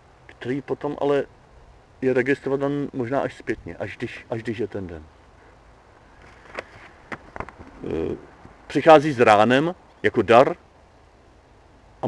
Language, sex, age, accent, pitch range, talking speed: Czech, male, 40-59, native, 100-130 Hz, 105 wpm